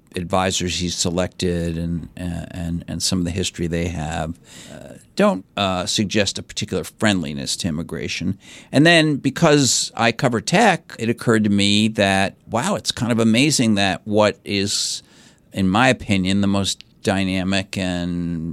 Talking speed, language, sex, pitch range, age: 150 wpm, English, male, 85-105 Hz, 50-69